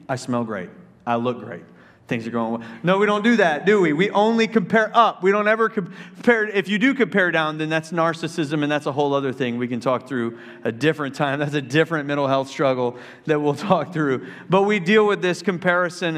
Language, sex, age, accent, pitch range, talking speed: English, male, 40-59, American, 130-175 Hz, 230 wpm